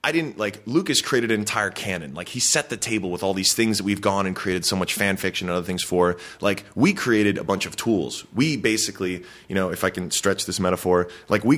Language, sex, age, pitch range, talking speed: English, male, 20-39, 90-110 Hz, 255 wpm